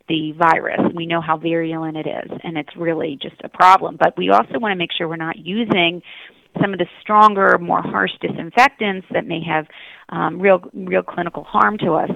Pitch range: 165-195 Hz